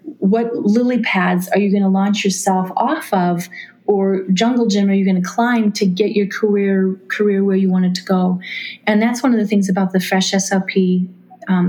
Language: English